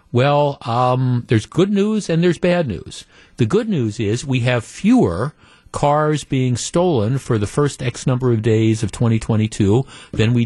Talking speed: 170 wpm